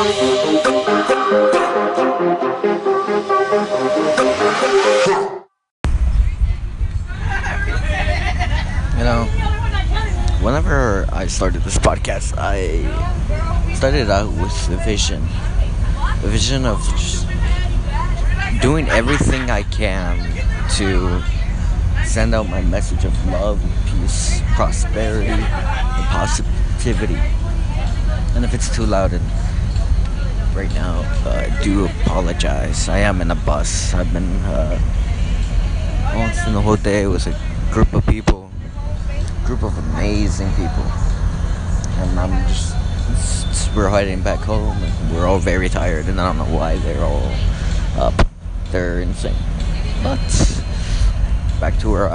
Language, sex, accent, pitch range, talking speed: English, male, American, 85-100 Hz, 105 wpm